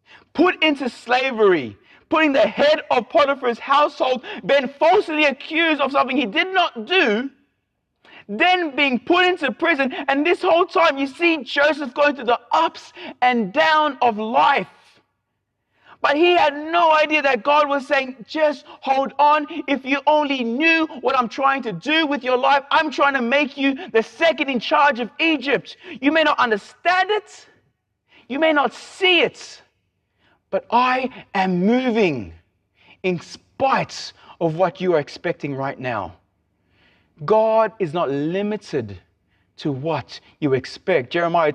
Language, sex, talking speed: English, male, 150 wpm